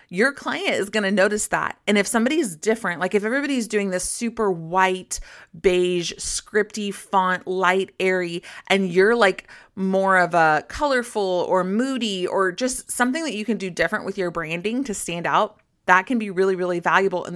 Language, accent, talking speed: English, American, 185 wpm